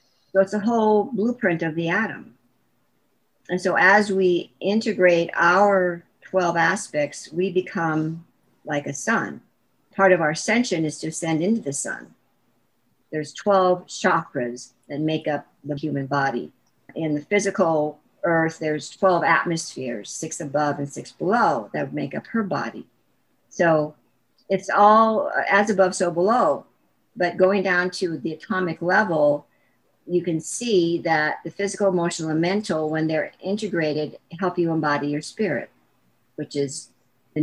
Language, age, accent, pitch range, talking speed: English, 50-69, American, 150-185 Hz, 145 wpm